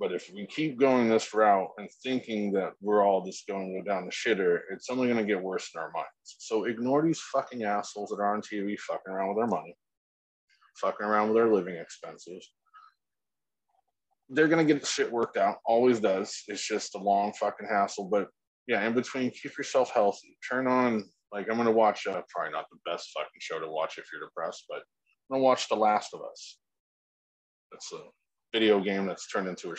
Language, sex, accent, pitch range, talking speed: English, male, American, 100-140 Hz, 210 wpm